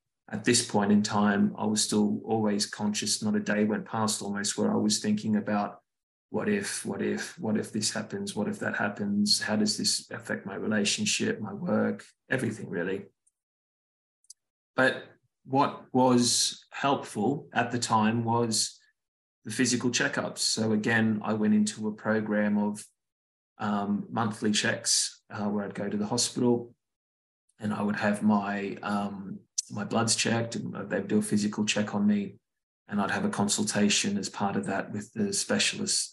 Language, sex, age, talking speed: English, male, 20-39, 170 wpm